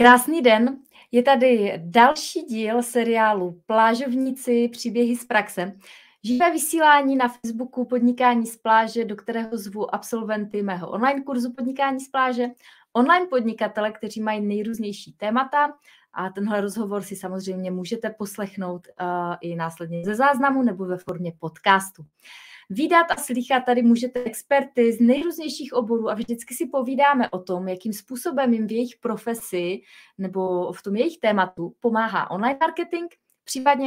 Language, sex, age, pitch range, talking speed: Czech, female, 20-39, 205-255 Hz, 140 wpm